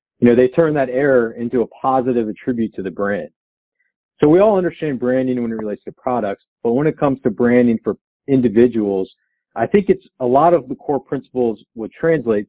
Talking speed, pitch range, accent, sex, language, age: 200 wpm, 115-140 Hz, American, male, English, 40-59